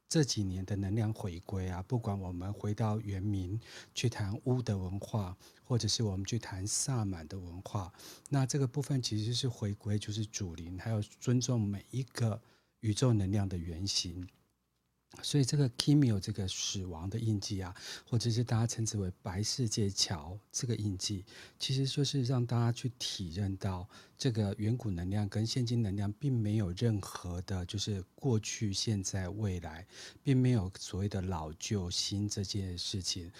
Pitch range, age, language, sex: 95-115 Hz, 50-69, Chinese, male